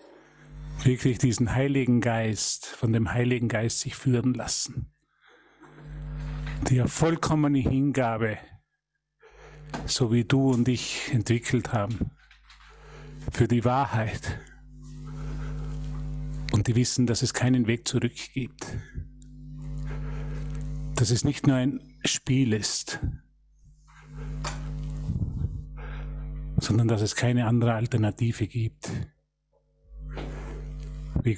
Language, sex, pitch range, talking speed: German, male, 115-145 Hz, 90 wpm